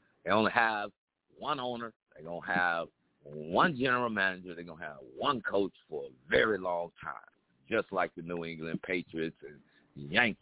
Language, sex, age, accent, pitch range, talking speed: English, male, 50-69, American, 90-135 Hz, 180 wpm